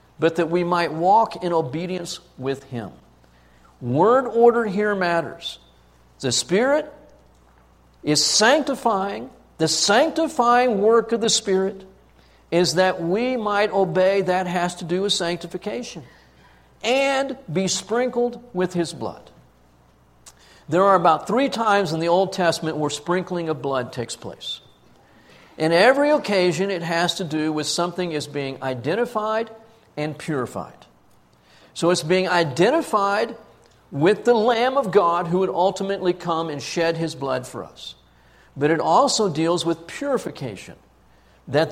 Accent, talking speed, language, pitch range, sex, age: American, 135 wpm, English, 140-205 Hz, male, 50-69